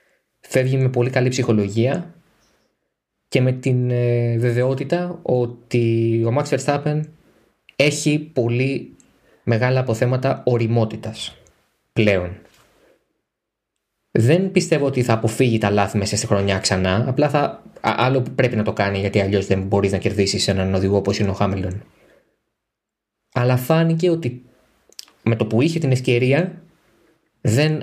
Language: Greek